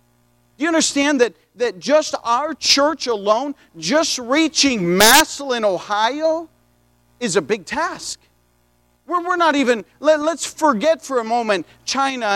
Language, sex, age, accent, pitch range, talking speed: English, male, 40-59, American, 225-305 Hz, 120 wpm